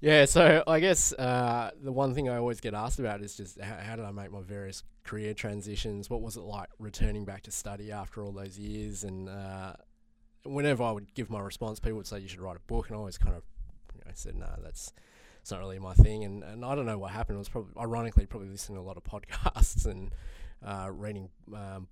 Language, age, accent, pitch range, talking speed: English, 20-39, Australian, 100-115 Hz, 245 wpm